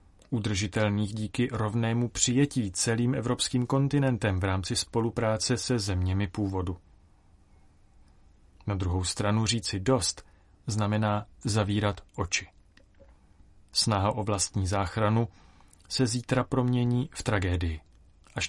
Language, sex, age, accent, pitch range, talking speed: Czech, male, 30-49, native, 90-115 Hz, 100 wpm